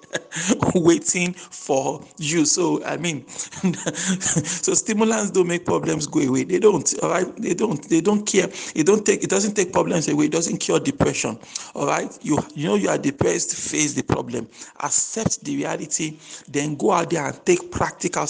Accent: Nigerian